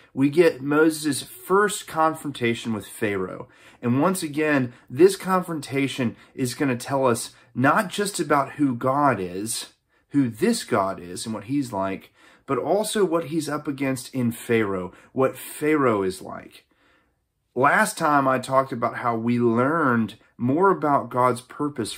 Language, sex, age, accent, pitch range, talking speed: English, male, 30-49, American, 115-145 Hz, 150 wpm